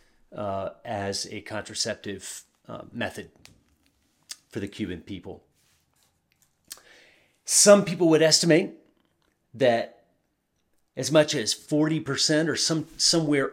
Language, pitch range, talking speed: English, 115-155 Hz, 100 wpm